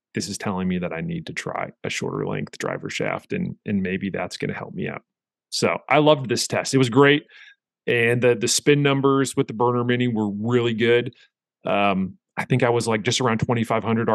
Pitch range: 115-150 Hz